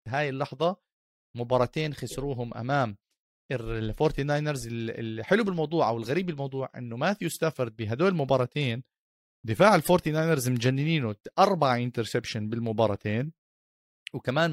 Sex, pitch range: male, 115-150 Hz